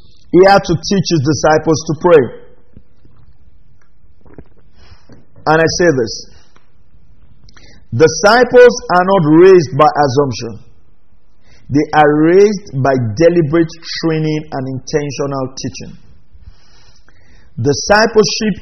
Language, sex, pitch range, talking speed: English, male, 135-170 Hz, 90 wpm